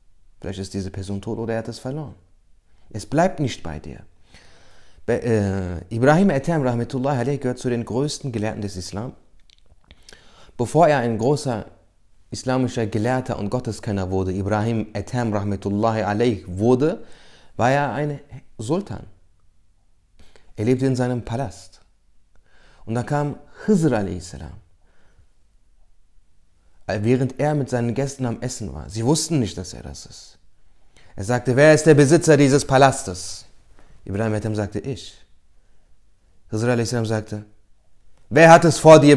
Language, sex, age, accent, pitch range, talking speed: German, male, 30-49, German, 95-130 Hz, 135 wpm